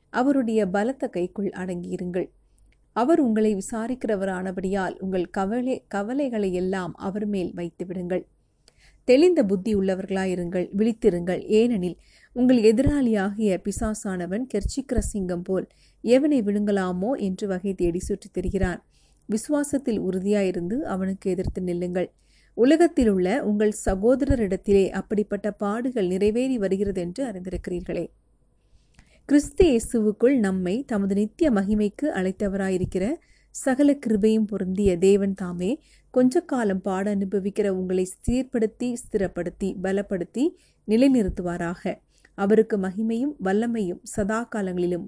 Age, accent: 30-49, native